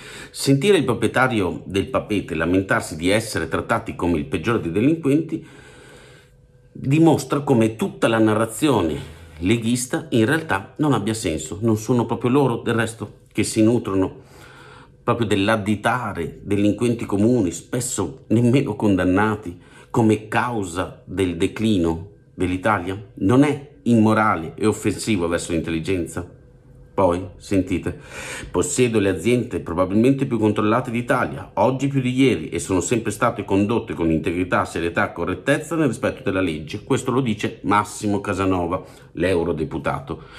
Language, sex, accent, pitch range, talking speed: Italian, male, native, 90-125 Hz, 125 wpm